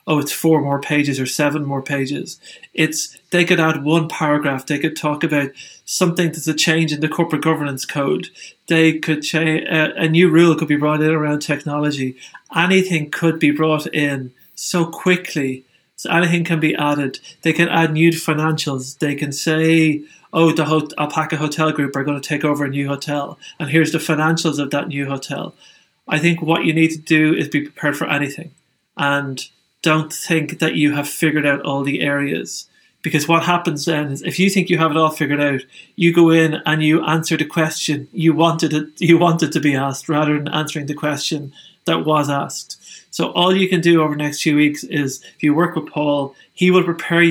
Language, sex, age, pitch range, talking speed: English, male, 30-49, 145-160 Hz, 205 wpm